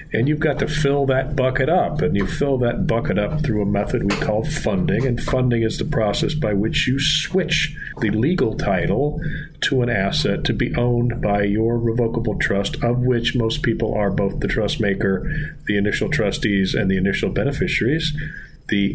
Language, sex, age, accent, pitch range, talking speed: English, male, 40-59, American, 110-145 Hz, 185 wpm